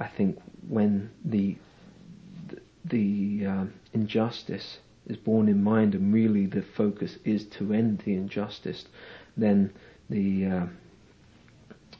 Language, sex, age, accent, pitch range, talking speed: English, male, 40-59, British, 100-115 Hz, 120 wpm